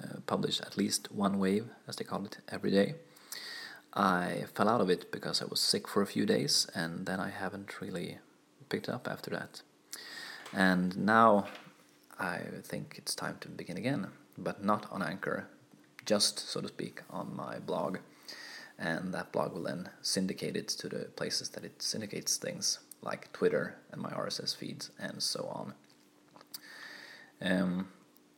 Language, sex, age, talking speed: Swedish, male, 20-39, 165 wpm